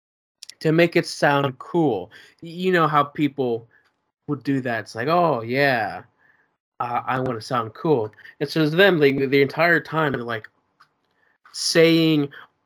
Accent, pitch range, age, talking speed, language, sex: American, 120-150 Hz, 20-39, 155 wpm, English, male